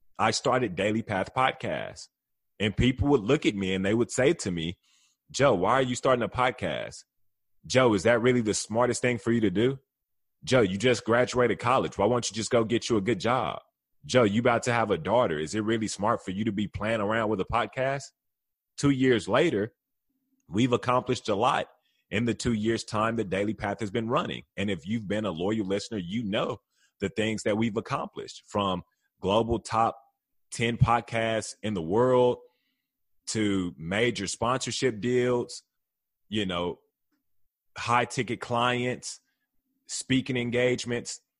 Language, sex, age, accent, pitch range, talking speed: English, male, 30-49, American, 100-125 Hz, 175 wpm